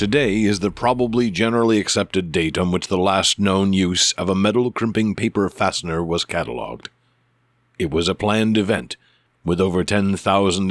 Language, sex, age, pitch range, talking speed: English, male, 50-69, 90-105 Hz, 165 wpm